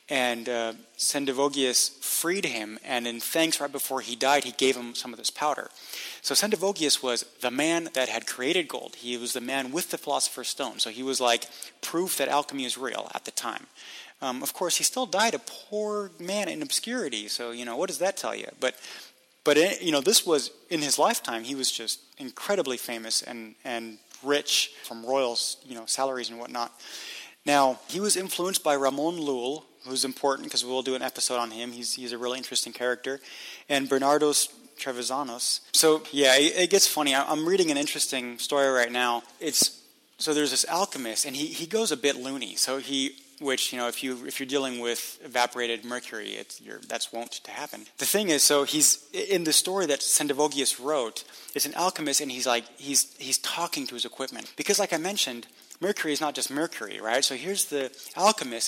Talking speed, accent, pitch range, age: 205 wpm, American, 125-155 Hz, 30-49